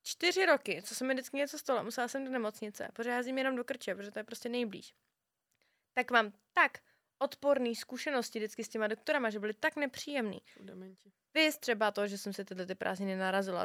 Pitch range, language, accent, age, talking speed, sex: 195-265 Hz, Czech, native, 20-39, 190 wpm, female